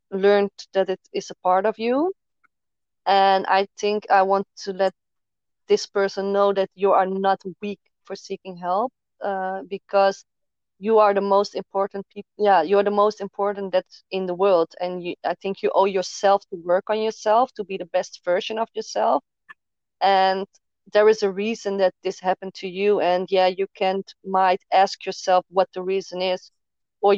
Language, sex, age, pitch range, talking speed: English, female, 20-39, 185-200 Hz, 185 wpm